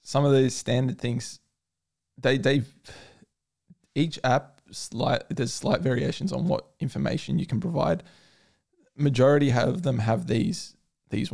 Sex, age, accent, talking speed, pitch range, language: male, 20-39, Australian, 130 wpm, 120-145 Hz, English